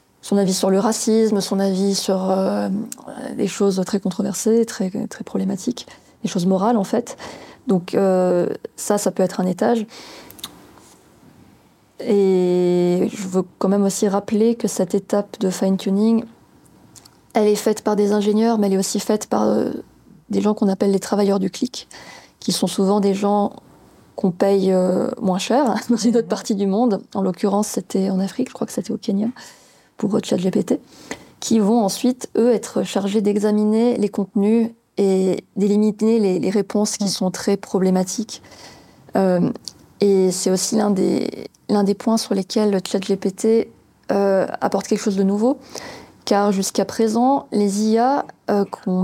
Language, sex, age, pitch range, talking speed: French, female, 20-39, 195-225 Hz, 165 wpm